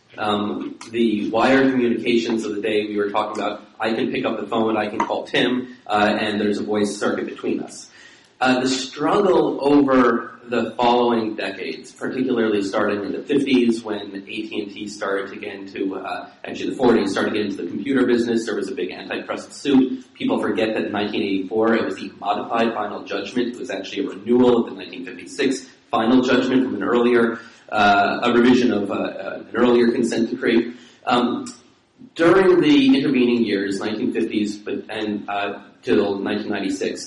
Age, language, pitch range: 30-49, English, 105-125 Hz